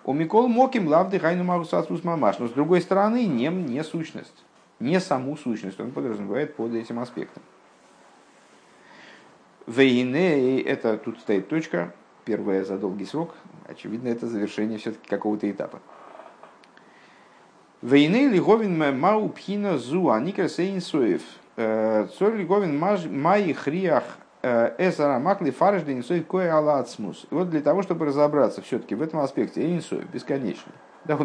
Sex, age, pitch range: male, 50-69, 110-175 Hz